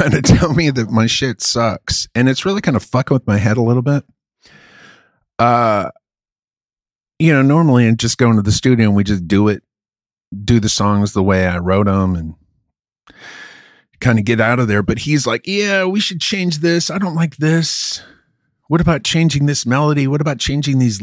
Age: 30-49